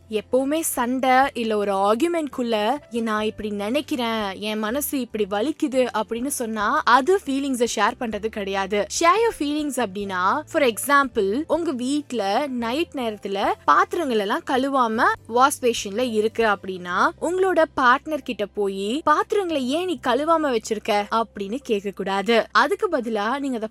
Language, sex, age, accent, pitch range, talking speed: Tamil, female, 20-39, native, 220-305 Hz, 80 wpm